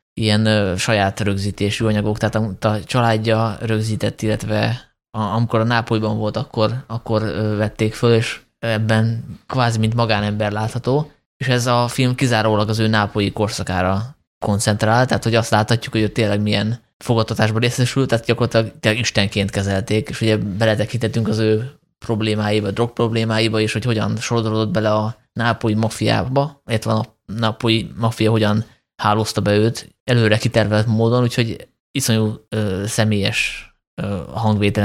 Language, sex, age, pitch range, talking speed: Hungarian, male, 20-39, 105-115 Hz, 145 wpm